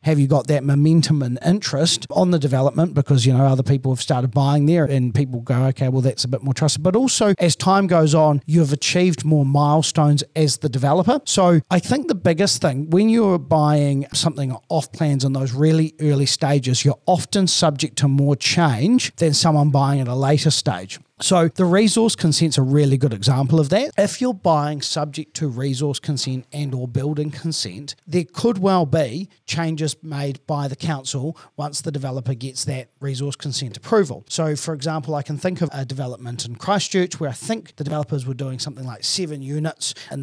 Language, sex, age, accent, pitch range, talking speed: English, male, 40-59, Australian, 140-165 Hz, 200 wpm